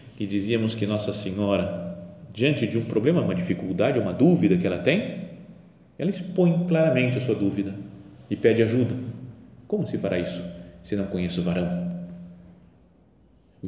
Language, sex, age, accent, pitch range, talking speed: Portuguese, male, 40-59, Brazilian, 105-175 Hz, 155 wpm